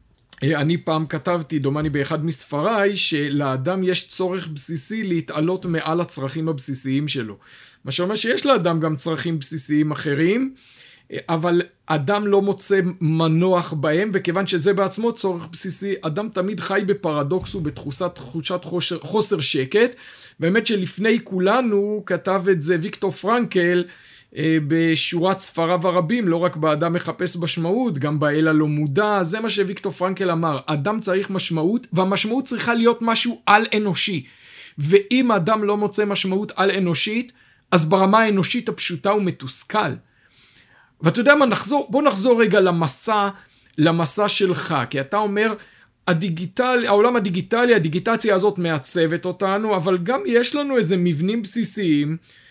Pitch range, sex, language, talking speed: 160-205 Hz, male, Hebrew, 130 wpm